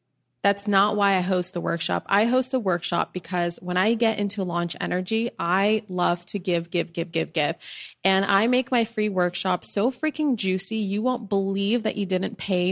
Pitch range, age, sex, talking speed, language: 175-215 Hz, 20-39, female, 200 wpm, English